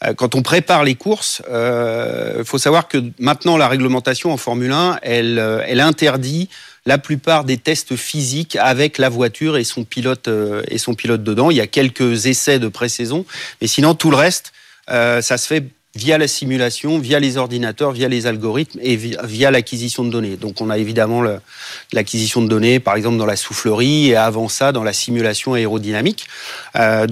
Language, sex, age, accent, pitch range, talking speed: French, male, 40-59, French, 115-140 Hz, 195 wpm